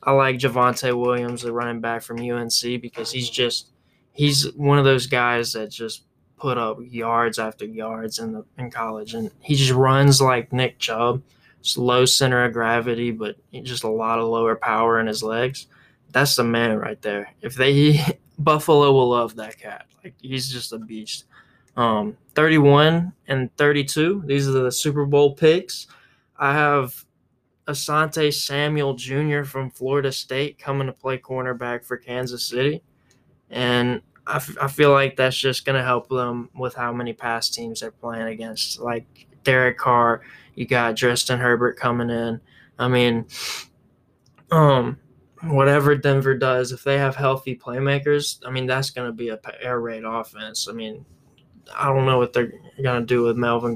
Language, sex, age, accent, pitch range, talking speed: English, male, 20-39, American, 120-135 Hz, 165 wpm